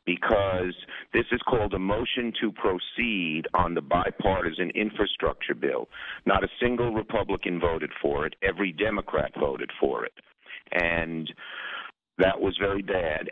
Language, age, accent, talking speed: English, 50-69, American, 135 wpm